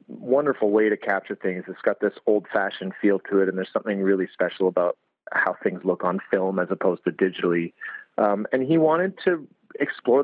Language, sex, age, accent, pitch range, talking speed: English, male, 30-49, American, 100-120 Hz, 200 wpm